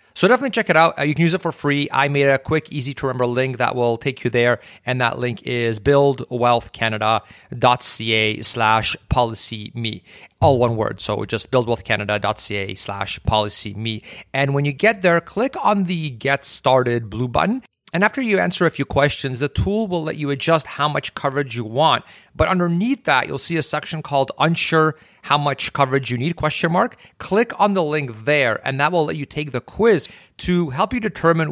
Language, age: English, 30-49